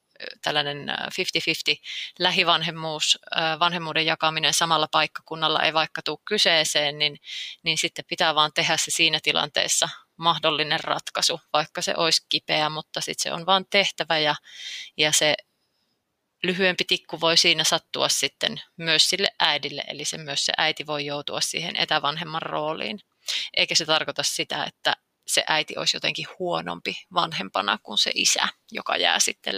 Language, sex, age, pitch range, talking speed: Finnish, female, 30-49, 155-180 Hz, 145 wpm